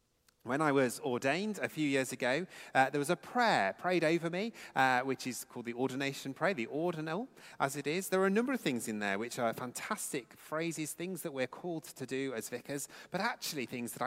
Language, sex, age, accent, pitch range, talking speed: English, male, 30-49, British, 120-175 Hz, 220 wpm